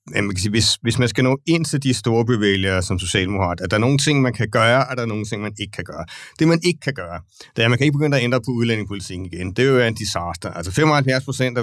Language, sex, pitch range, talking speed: Danish, male, 100-120 Hz, 305 wpm